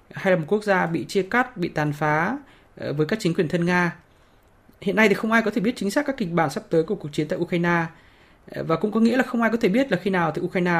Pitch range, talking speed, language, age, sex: 160-195 Hz, 290 wpm, Vietnamese, 20-39, male